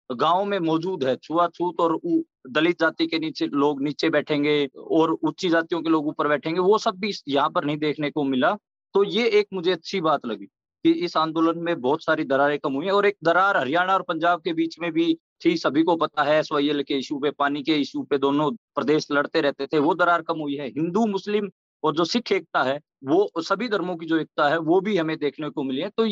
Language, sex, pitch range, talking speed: English, male, 155-200 Hz, 140 wpm